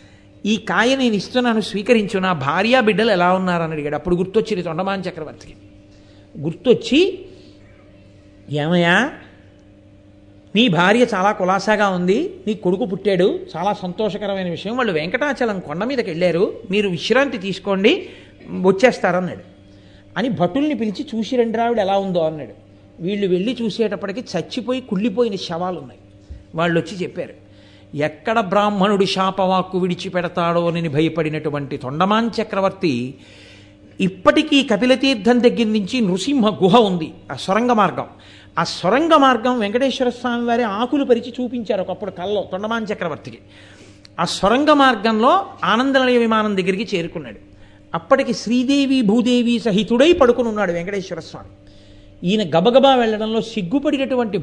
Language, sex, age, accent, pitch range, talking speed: Telugu, male, 60-79, native, 160-240 Hz, 115 wpm